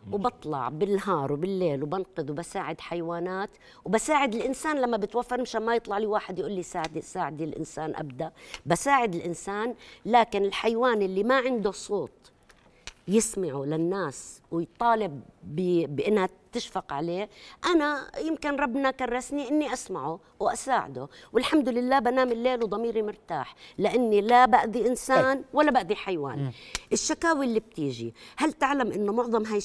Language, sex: Arabic, female